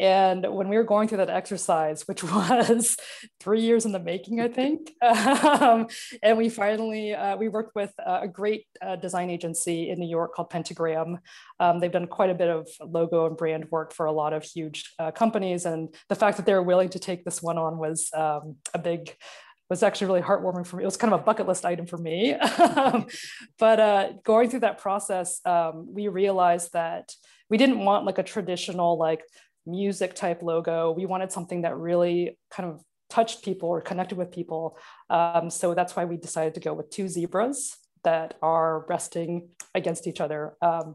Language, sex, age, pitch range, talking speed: English, female, 20-39, 170-210 Hz, 200 wpm